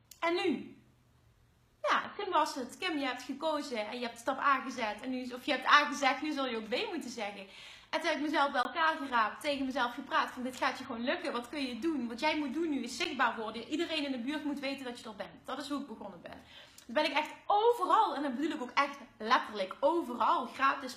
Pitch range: 240-300 Hz